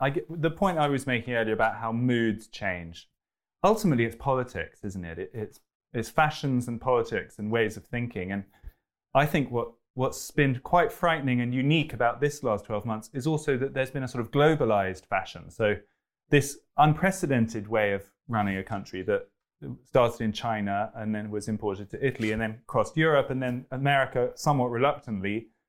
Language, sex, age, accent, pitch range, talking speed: English, male, 20-39, British, 110-145 Hz, 180 wpm